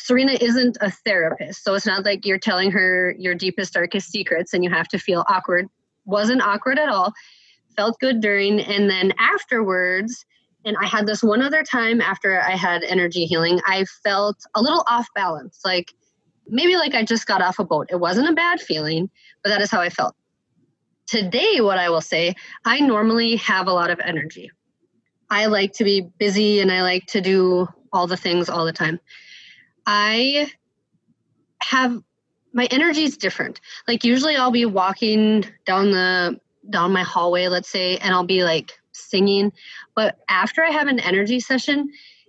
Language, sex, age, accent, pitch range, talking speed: English, female, 20-39, American, 185-235 Hz, 180 wpm